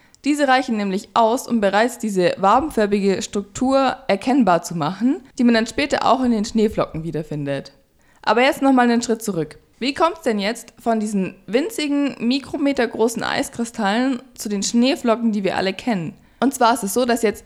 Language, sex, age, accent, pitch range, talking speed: German, female, 20-39, German, 195-250 Hz, 180 wpm